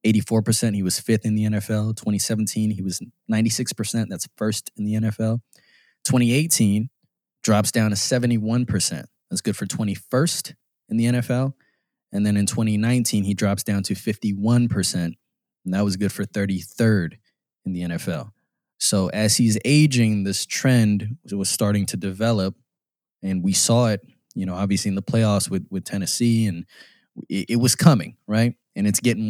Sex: male